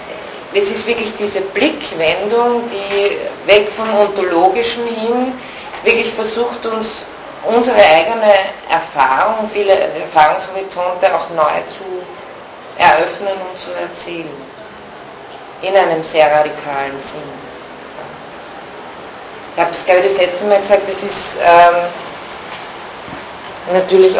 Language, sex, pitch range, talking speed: Turkish, female, 165-205 Hz, 105 wpm